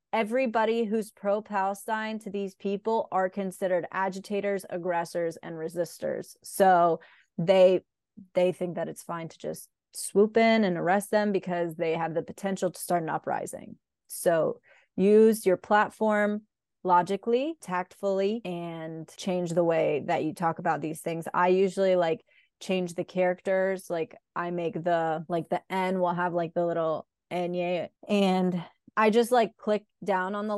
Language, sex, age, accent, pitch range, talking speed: English, female, 20-39, American, 170-200 Hz, 155 wpm